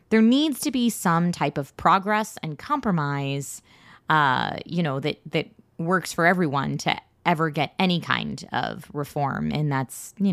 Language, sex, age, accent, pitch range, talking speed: English, female, 20-39, American, 145-180 Hz, 165 wpm